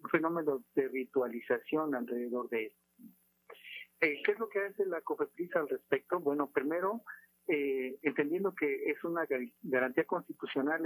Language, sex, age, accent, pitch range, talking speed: Spanish, male, 50-69, Mexican, 140-190 Hz, 140 wpm